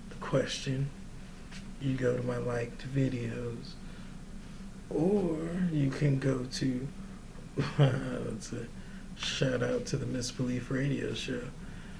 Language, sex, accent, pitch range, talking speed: English, male, American, 115-140 Hz, 95 wpm